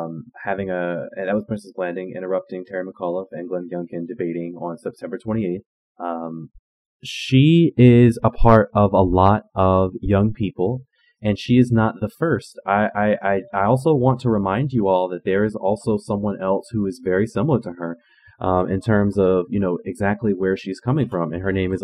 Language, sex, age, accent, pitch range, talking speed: English, male, 20-39, American, 95-120 Hz, 190 wpm